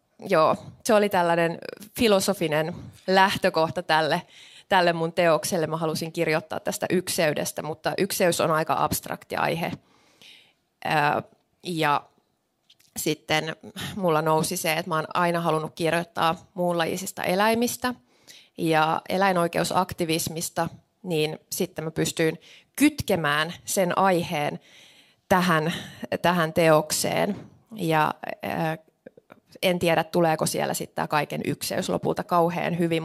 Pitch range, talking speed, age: 155-185 Hz, 105 wpm, 20-39